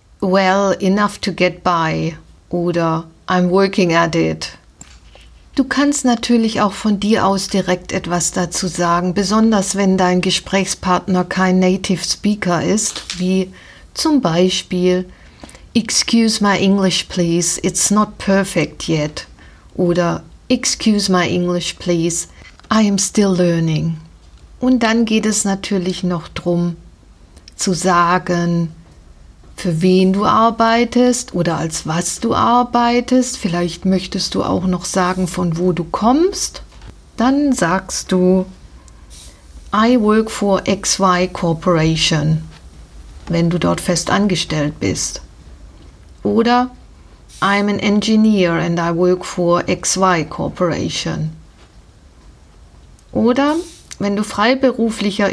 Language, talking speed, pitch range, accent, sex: German, 115 wpm, 165-205 Hz, German, female